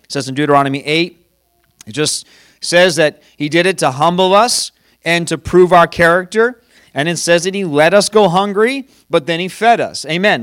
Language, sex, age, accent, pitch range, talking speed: English, male, 40-59, American, 165-225 Hz, 200 wpm